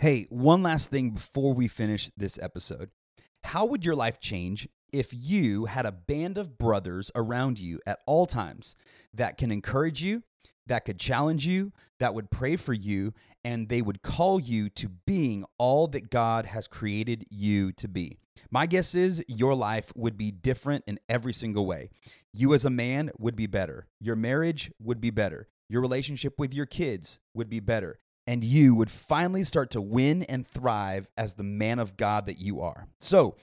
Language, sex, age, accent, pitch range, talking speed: English, male, 30-49, American, 105-140 Hz, 185 wpm